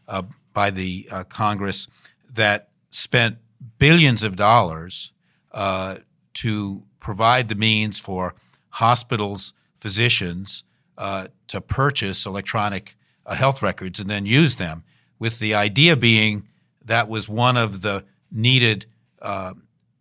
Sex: male